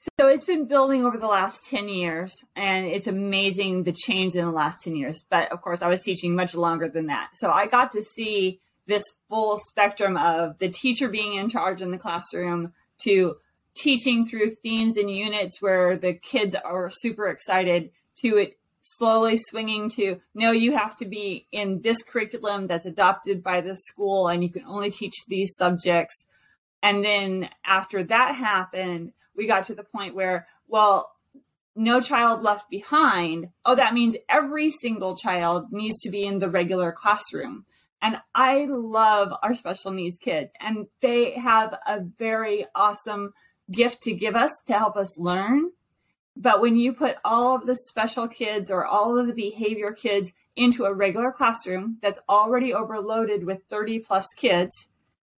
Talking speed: 170 wpm